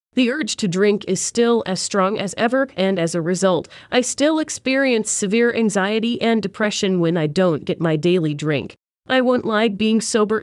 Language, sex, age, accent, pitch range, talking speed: English, female, 30-49, American, 175-220 Hz, 190 wpm